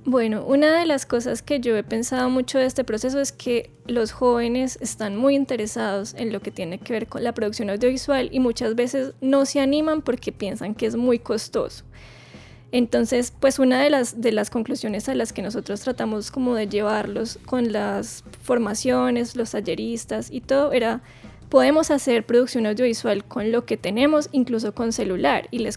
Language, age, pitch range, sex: Spanish, 10-29, 215-255 Hz, female